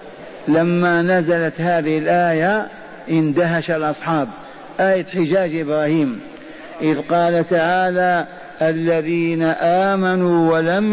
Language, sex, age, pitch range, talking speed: Arabic, male, 50-69, 170-195 Hz, 80 wpm